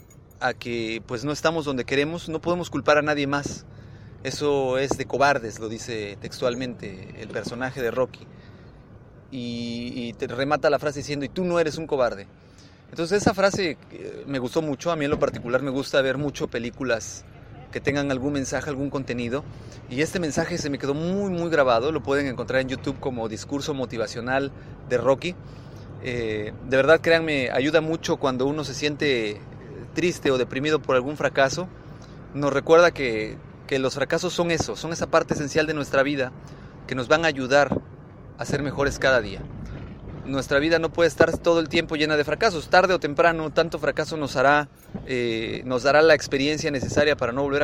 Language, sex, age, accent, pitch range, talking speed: Spanish, male, 30-49, Mexican, 125-155 Hz, 185 wpm